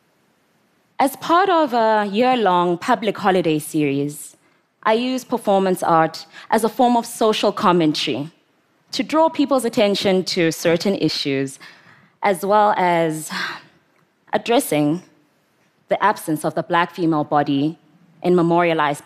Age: 20-39